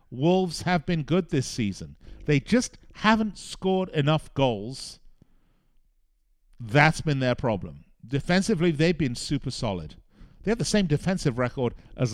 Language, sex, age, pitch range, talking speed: English, male, 50-69, 115-150 Hz, 140 wpm